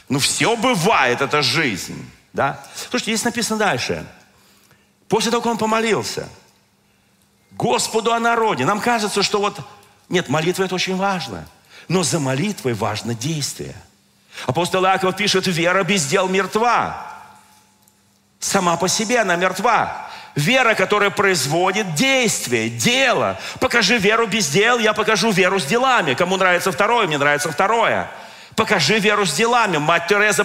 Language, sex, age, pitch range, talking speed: Russian, male, 40-59, 165-220 Hz, 135 wpm